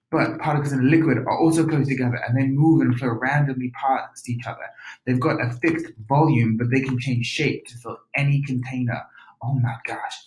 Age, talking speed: 20-39, 205 wpm